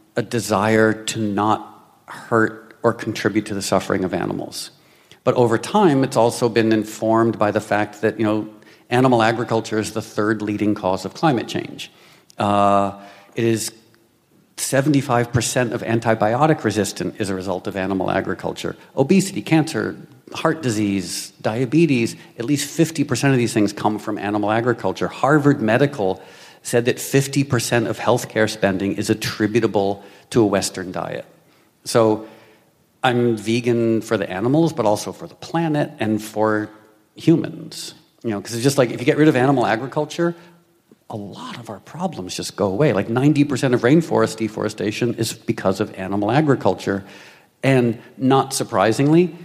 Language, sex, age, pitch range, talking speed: English, male, 50-69, 105-130 Hz, 150 wpm